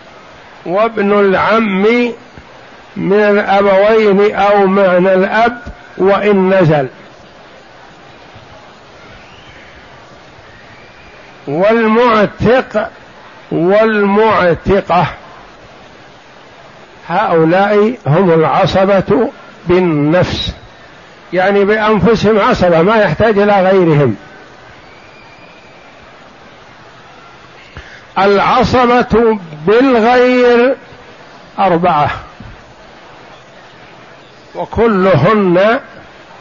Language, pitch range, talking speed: Arabic, 180-220 Hz, 45 wpm